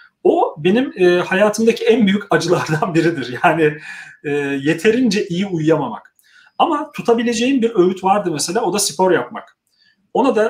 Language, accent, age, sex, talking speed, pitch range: Turkish, native, 40-59, male, 130 wpm, 165-205 Hz